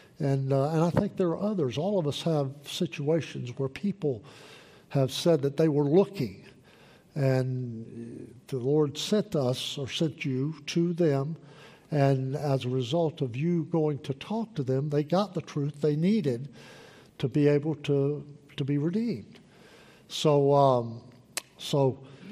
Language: English